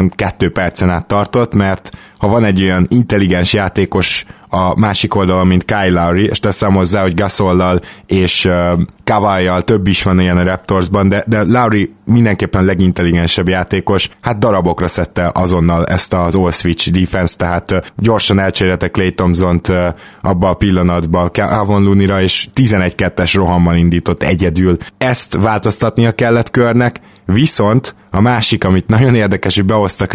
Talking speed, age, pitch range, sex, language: 145 wpm, 20-39, 90-105 Hz, male, Hungarian